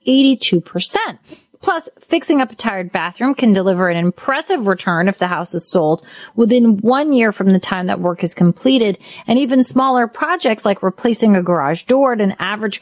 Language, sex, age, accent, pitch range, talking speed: English, female, 30-49, American, 185-250 Hz, 185 wpm